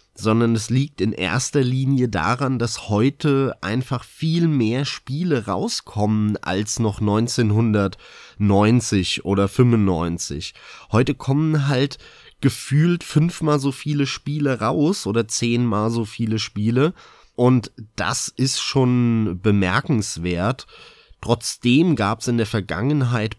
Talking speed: 115 wpm